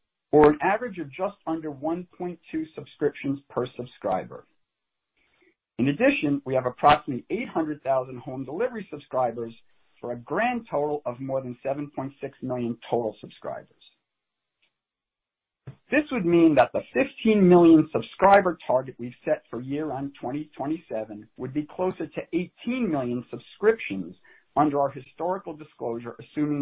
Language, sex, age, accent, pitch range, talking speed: English, male, 50-69, American, 130-180 Hz, 130 wpm